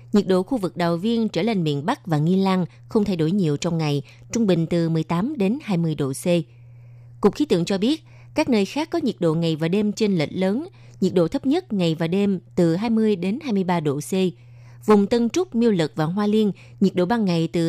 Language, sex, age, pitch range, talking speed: Vietnamese, female, 20-39, 155-210 Hz, 240 wpm